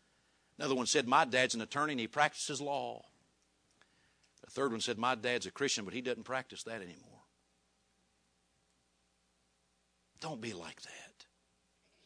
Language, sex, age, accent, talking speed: English, male, 50-69, American, 145 wpm